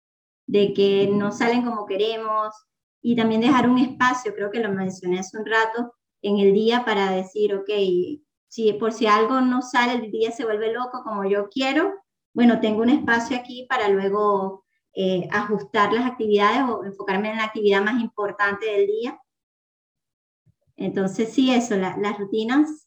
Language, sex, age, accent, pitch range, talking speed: Spanish, male, 20-39, American, 205-250 Hz, 170 wpm